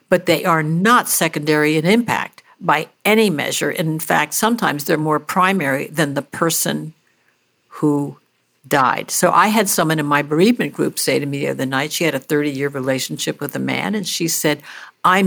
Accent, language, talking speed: American, English, 185 wpm